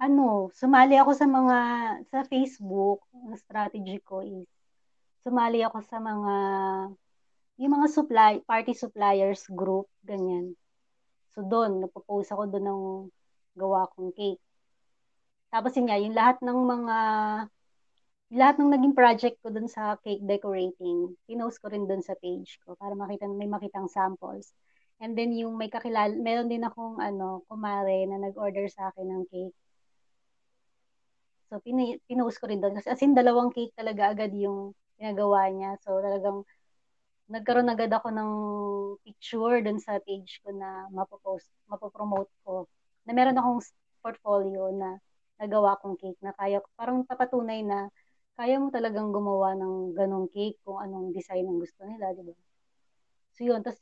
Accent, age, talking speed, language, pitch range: native, 20-39, 150 wpm, Filipino, 195-235 Hz